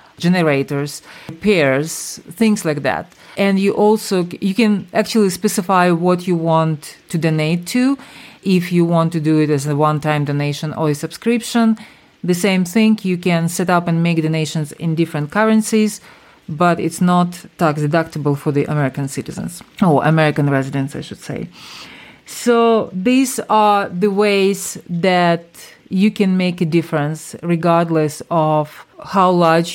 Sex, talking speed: female, 150 wpm